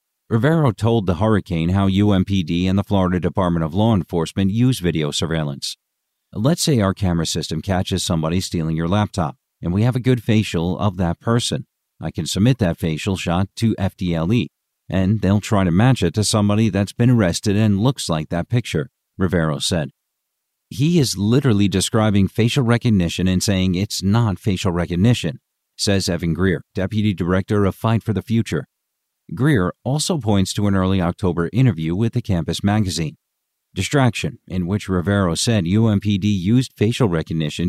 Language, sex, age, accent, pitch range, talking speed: English, male, 50-69, American, 85-110 Hz, 165 wpm